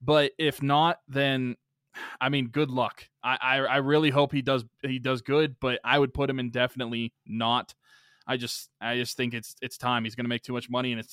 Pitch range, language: 125-140 Hz, English